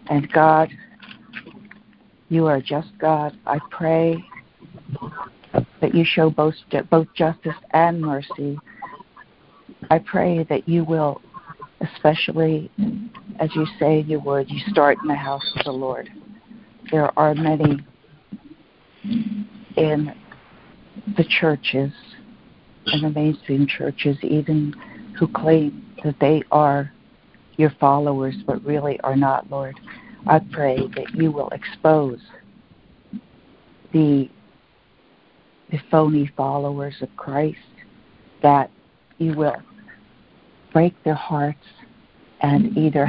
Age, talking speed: 60-79, 110 wpm